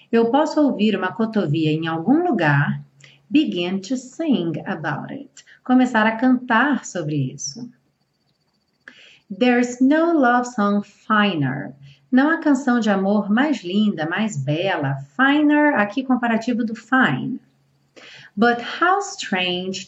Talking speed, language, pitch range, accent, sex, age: 120 wpm, Portuguese, 180-245 Hz, Brazilian, female, 40-59